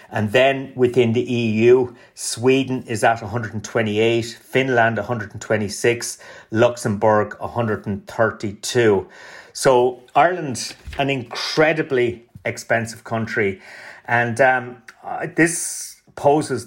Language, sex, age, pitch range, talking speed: English, male, 30-49, 110-125 Hz, 85 wpm